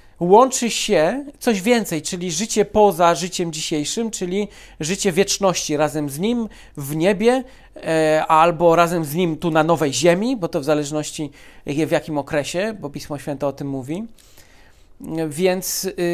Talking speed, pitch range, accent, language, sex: 145 wpm, 155-195 Hz, native, Polish, male